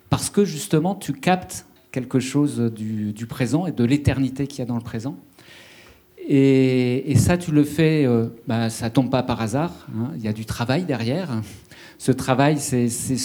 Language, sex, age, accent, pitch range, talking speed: French, male, 50-69, French, 120-145 Hz, 200 wpm